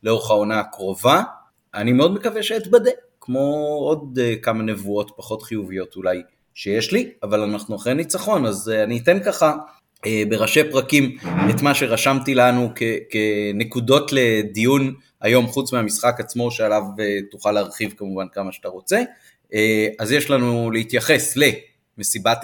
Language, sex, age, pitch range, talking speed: Hebrew, male, 30-49, 105-135 Hz, 130 wpm